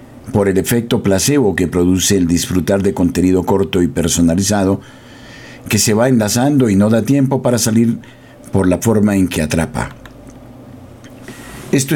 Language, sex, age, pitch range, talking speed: Spanish, male, 50-69, 100-130 Hz, 150 wpm